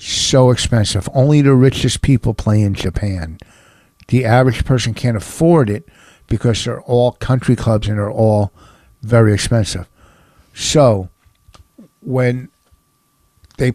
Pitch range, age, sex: 105-130 Hz, 60-79, male